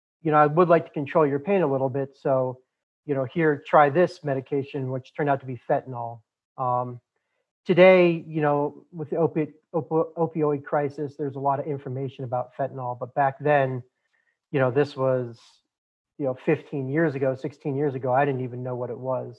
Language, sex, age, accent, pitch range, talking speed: English, male, 30-49, American, 130-155 Hz, 190 wpm